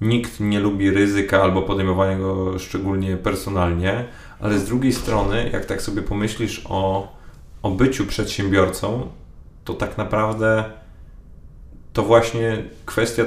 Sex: male